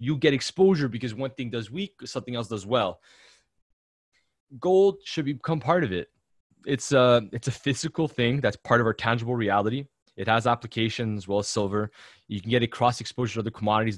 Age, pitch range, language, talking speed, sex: 20-39, 105-130 Hz, English, 195 wpm, male